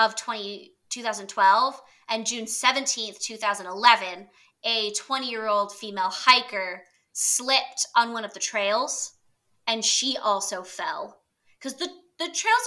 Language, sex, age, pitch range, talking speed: English, female, 20-39, 205-275 Hz, 110 wpm